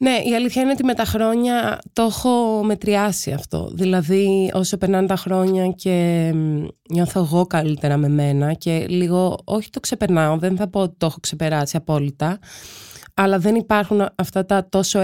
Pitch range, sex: 170-210 Hz, female